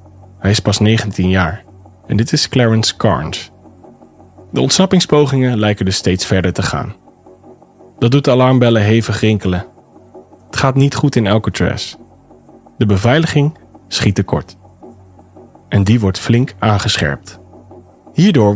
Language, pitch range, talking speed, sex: Dutch, 95-140 Hz, 125 wpm, male